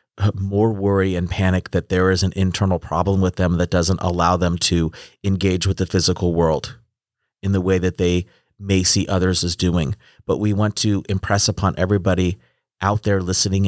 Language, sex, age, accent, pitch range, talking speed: English, male, 30-49, American, 90-100 Hz, 185 wpm